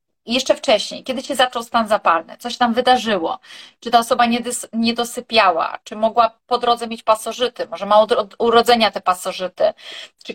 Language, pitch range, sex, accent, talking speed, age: Polish, 210-255 Hz, female, native, 160 wpm, 30-49